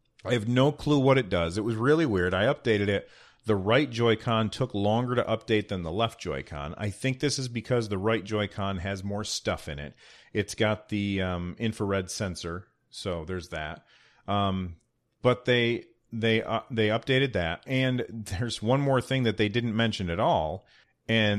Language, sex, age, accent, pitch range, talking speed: English, male, 40-59, American, 95-120 Hz, 190 wpm